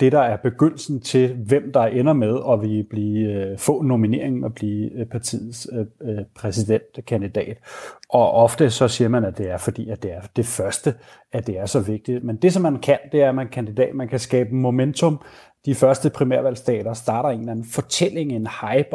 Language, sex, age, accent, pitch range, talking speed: Danish, male, 30-49, native, 115-140 Hz, 195 wpm